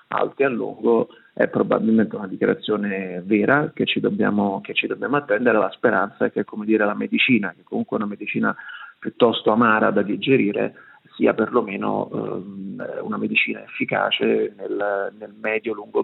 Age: 40-59